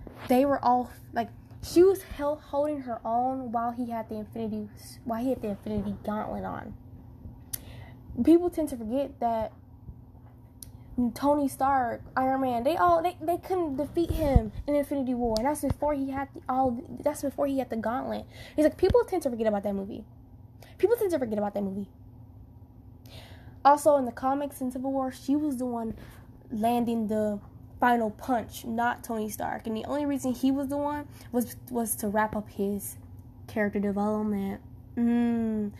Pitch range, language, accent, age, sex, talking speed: 205-265 Hz, English, American, 10-29, female, 175 wpm